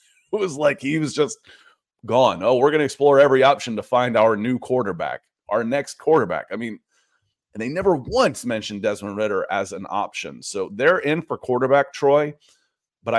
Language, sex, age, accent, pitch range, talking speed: English, male, 30-49, American, 105-135 Hz, 185 wpm